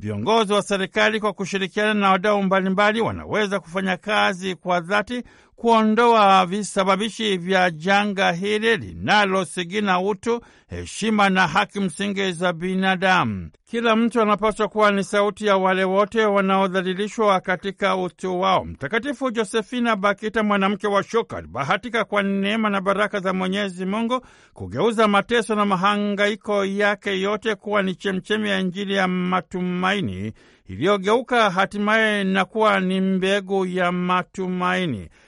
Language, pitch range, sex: Swahili, 190-215 Hz, male